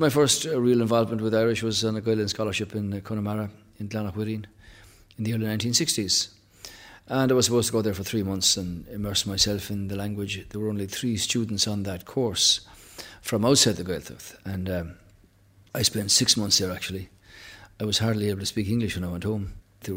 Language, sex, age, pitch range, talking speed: English, male, 40-59, 100-110 Hz, 210 wpm